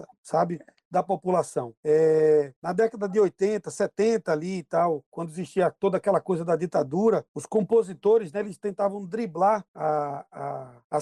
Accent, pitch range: Brazilian, 170-230 Hz